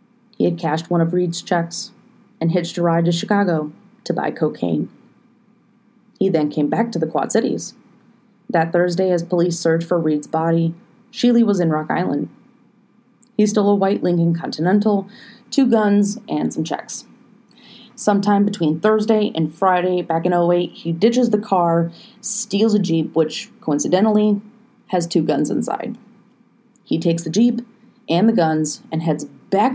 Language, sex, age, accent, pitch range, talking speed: English, female, 30-49, American, 170-230 Hz, 160 wpm